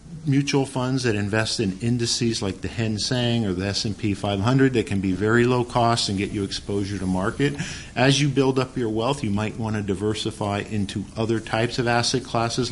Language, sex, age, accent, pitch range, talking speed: English, male, 50-69, American, 110-135 Hz, 200 wpm